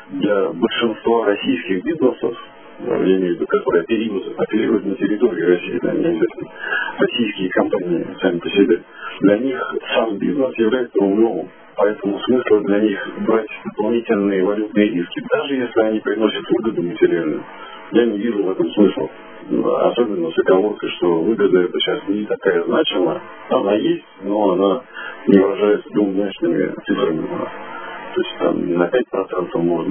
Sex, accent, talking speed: male, native, 140 wpm